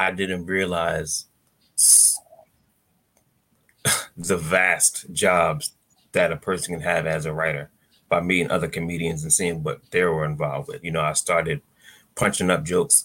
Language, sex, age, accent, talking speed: English, male, 30-49, American, 145 wpm